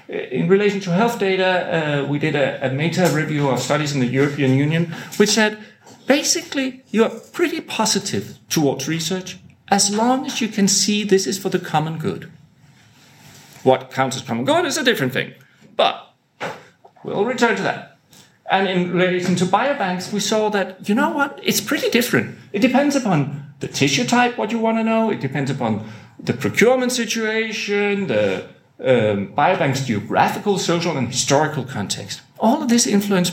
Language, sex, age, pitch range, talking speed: English, male, 40-59, 145-240 Hz, 170 wpm